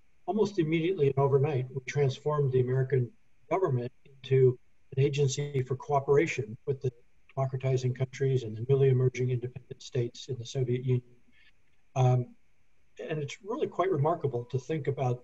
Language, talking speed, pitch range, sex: Hungarian, 145 wpm, 120-135 Hz, male